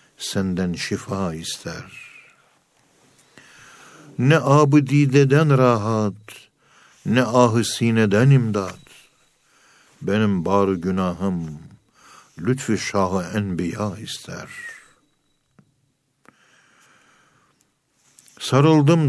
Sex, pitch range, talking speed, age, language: male, 100-125 Hz, 55 wpm, 60-79, Turkish